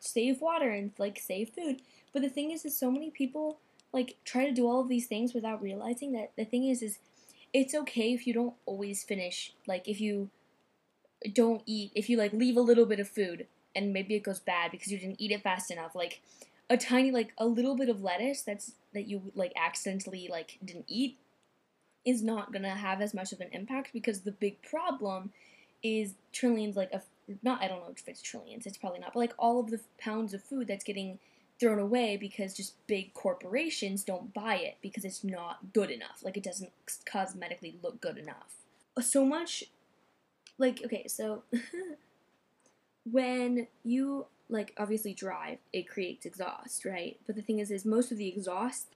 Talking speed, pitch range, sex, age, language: 195 wpm, 195-245 Hz, female, 10-29, English